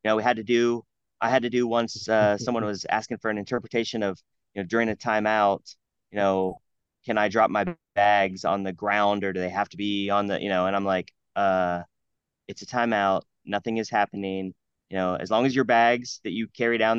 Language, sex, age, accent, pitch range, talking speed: English, male, 20-39, American, 100-120 Hz, 230 wpm